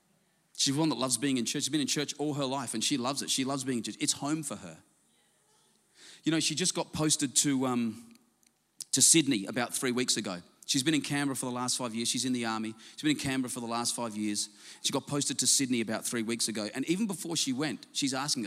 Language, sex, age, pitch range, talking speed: English, male, 30-49, 130-180 Hz, 255 wpm